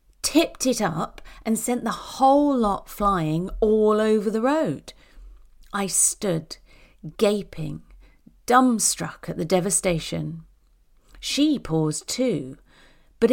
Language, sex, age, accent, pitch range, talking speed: English, female, 40-59, British, 170-250 Hz, 110 wpm